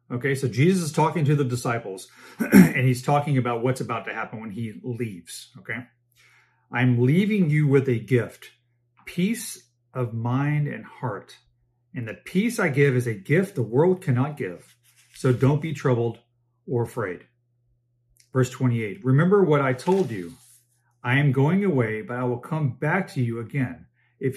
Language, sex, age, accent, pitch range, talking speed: English, male, 40-59, American, 120-150 Hz, 170 wpm